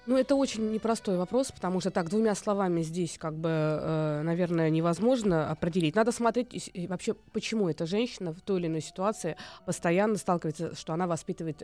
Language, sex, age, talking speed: Russian, female, 20-39, 165 wpm